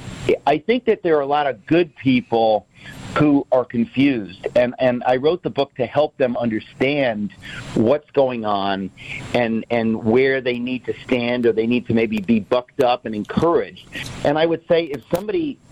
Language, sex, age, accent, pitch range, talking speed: English, male, 50-69, American, 120-155 Hz, 185 wpm